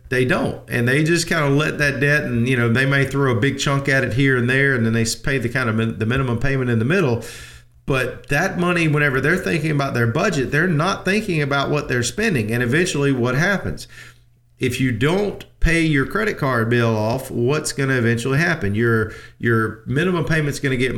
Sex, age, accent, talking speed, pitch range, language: male, 40-59, American, 225 wpm, 115-145 Hz, English